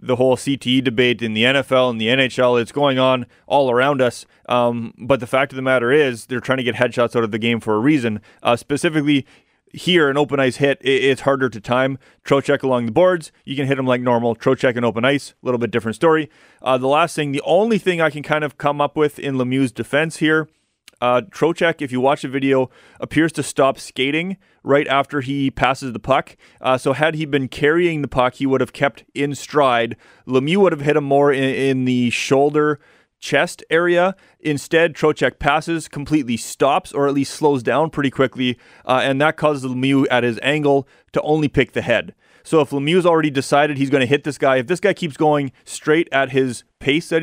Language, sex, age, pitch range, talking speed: English, male, 30-49, 130-150 Hz, 220 wpm